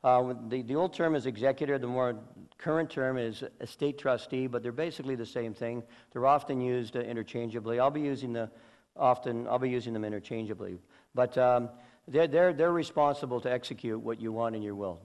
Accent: American